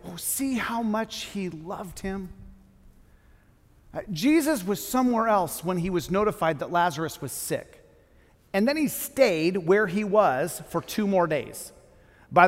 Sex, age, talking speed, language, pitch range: male, 40-59, 150 wpm, English, 165-220 Hz